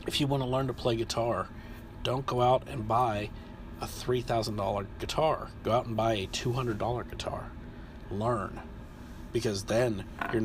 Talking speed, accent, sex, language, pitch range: 155 wpm, American, male, English, 100-120 Hz